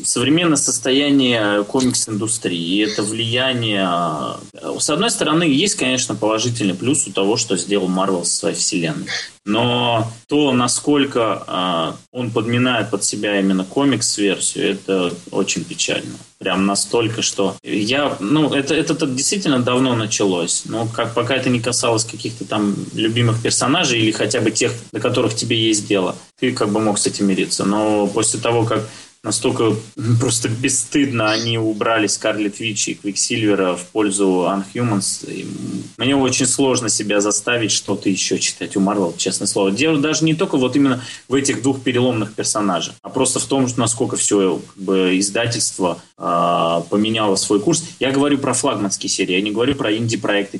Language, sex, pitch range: Russian, male, 100-130 Hz